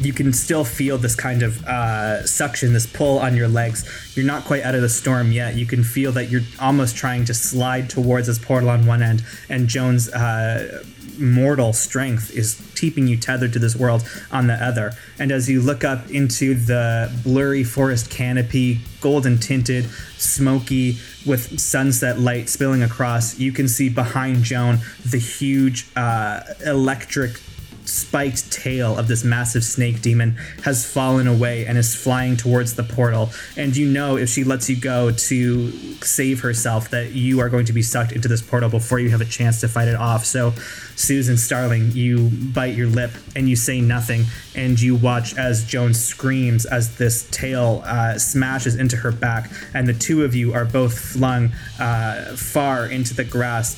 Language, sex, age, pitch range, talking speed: English, male, 20-39, 115-130 Hz, 180 wpm